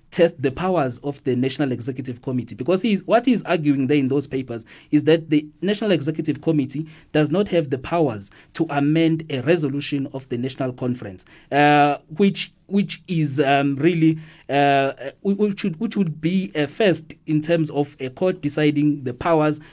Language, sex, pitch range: English, male, 145-170 Hz